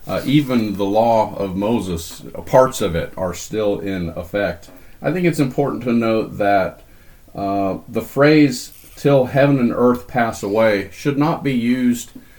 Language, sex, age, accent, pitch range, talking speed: English, male, 40-59, American, 100-130 Hz, 160 wpm